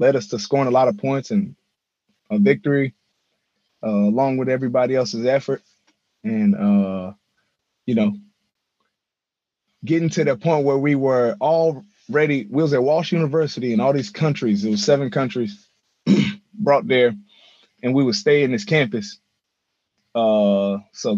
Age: 20-39